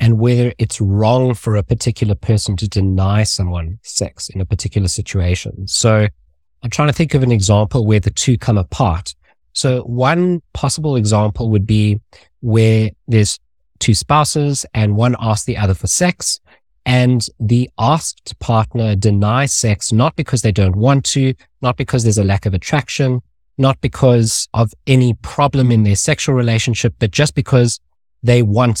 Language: English